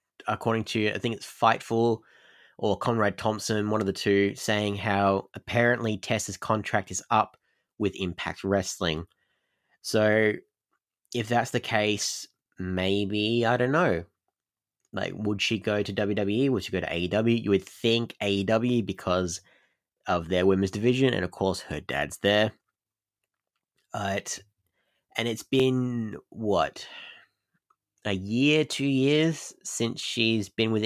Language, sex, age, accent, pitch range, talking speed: English, male, 20-39, Australian, 95-115 Hz, 135 wpm